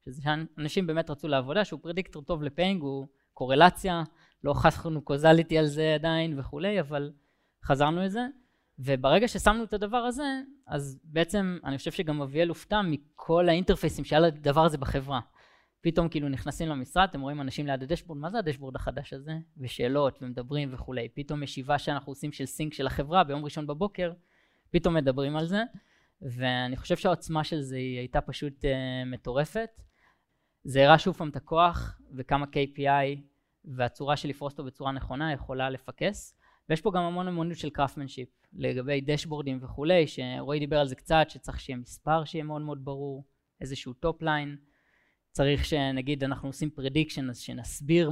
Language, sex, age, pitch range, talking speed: Hebrew, female, 20-39, 135-165 Hz, 160 wpm